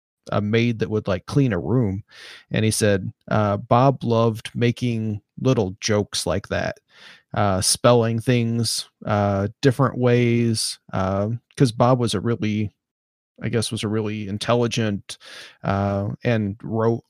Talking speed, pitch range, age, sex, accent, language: 140 wpm, 100-115 Hz, 30-49, male, American, English